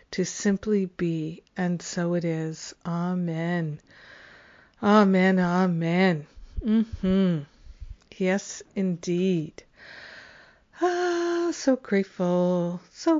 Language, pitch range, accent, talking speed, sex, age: English, 180-220 Hz, American, 80 wpm, female, 50-69